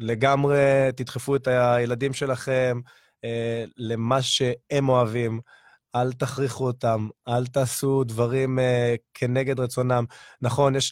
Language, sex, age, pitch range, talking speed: Hebrew, male, 20-39, 115-135 Hz, 110 wpm